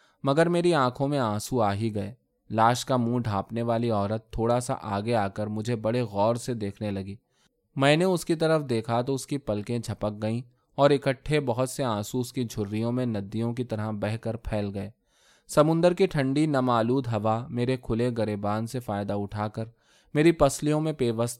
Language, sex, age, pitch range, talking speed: Urdu, male, 20-39, 110-135 Hz, 195 wpm